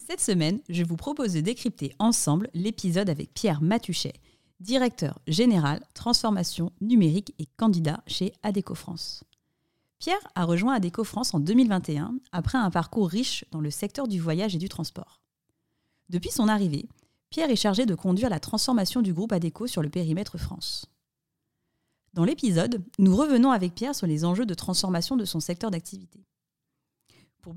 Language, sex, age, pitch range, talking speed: French, female, 30-49, 175-235 Hz, 160 wpm